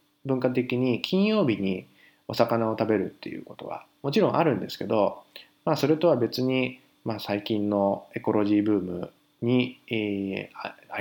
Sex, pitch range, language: male, 105-150 Hz, Japanese